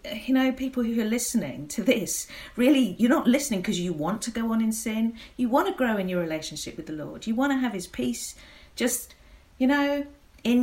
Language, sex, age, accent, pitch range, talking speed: English, female, 40-59, British, 160-240 Hz, 225 wpm